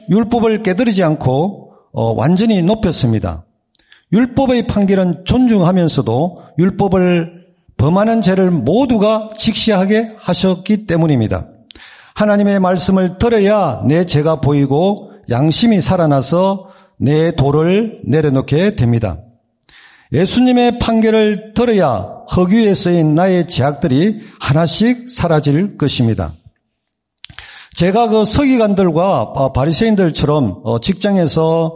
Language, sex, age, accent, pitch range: Korean, male, 50-69, native, 140-205 Hz